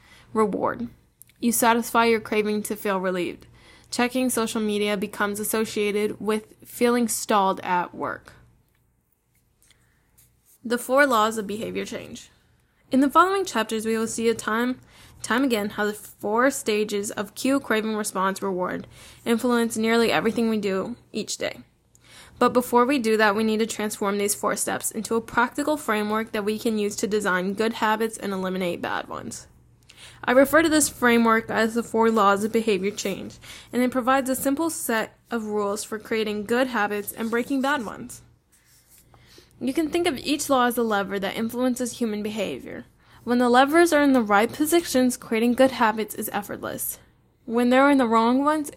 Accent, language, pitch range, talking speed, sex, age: American, English, 210-250 Hz, 170 wpm, female, 10-29